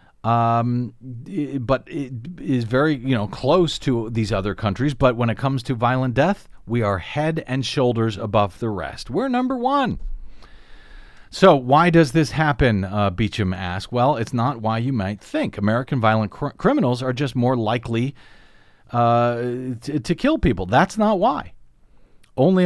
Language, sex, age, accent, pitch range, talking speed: English, male, 40-59, American, 115-155 Hz, 165 wpm